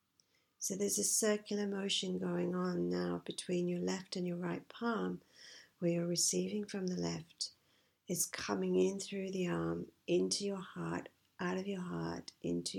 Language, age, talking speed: English, 50-69, 165 wpm